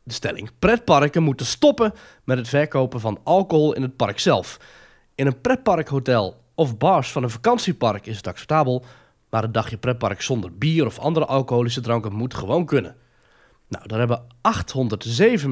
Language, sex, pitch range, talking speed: Dutch, male, 115-145 Hz, 160 wpm